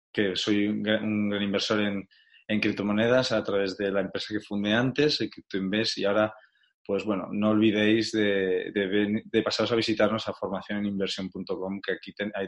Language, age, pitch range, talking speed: Spanish, 20-39, 100-120 Hz, 190 wpm